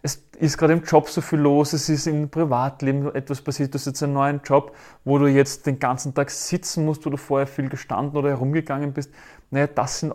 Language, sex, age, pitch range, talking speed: German, male, 30-49, 130-155 Hz, 230 wpm